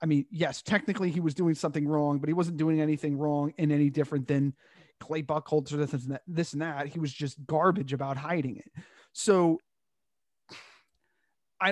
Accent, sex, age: American, male, 30-49